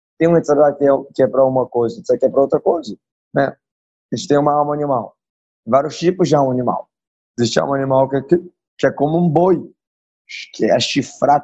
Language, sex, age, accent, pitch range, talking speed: Portuguese, male, 20-39, Brazilian, 130-165 Hz, 215 wpm